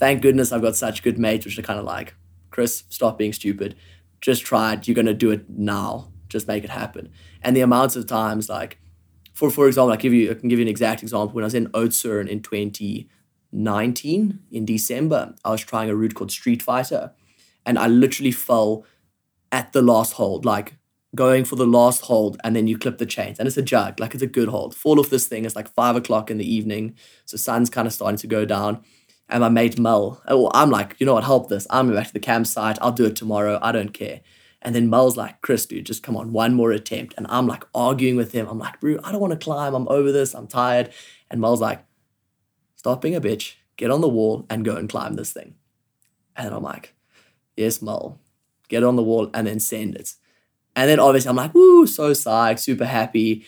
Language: English